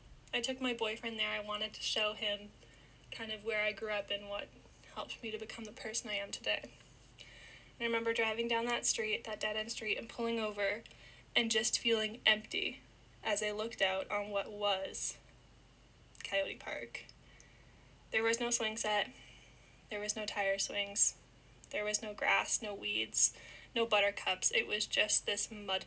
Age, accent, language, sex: 10-29, American, English, female